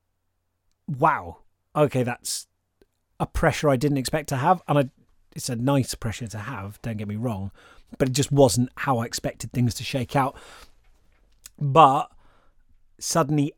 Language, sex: English, male